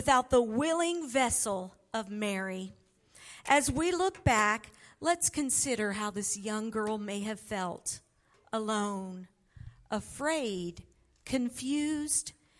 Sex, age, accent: female, 50-69, American